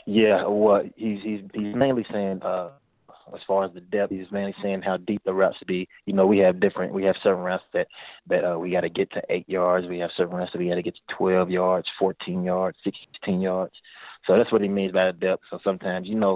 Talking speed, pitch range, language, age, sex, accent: 255 wpm, 90-100 Hz, English, 20-39, male, American